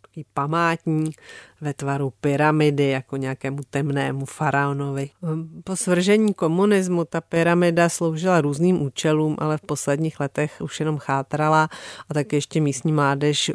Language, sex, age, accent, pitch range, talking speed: Czech, female, 40-59, native, 140-160 Hz, 135 wpm